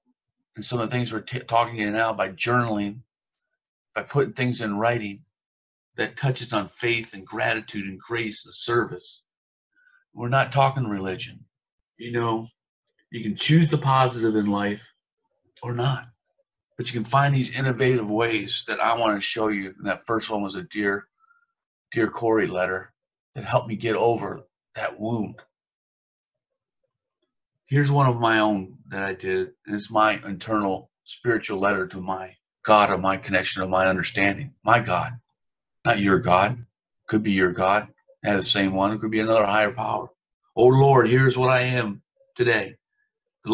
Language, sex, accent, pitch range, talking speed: English, male, American, 105-140 Hz, 170 wpm